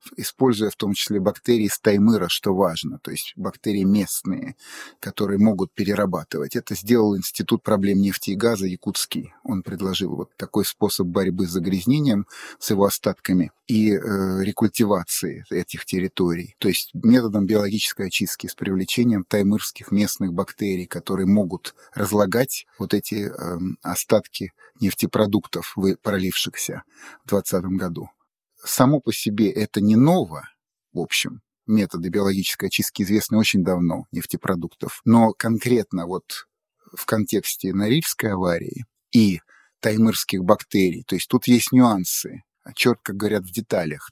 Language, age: Russian, 30-49